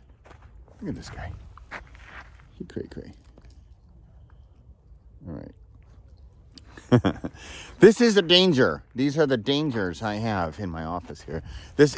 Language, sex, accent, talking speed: English, male, American, 120 wpm